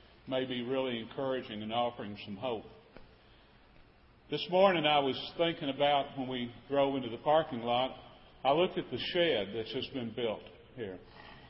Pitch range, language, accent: 125-155 Hz, English, American